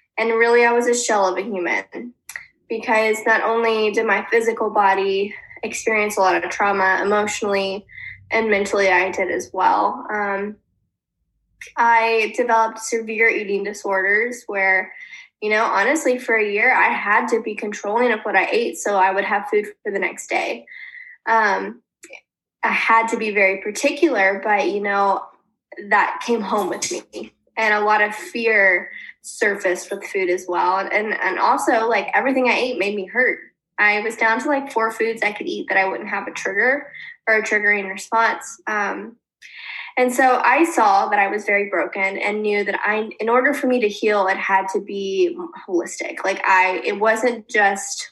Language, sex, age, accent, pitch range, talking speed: English, female, 10-29, American, 200-230 Hz, 180 wpm